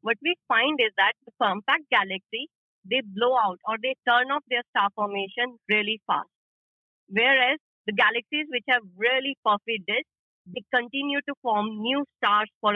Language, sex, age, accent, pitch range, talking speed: English, female, 30-49, Indian, 195-255 Hz, 165 wpm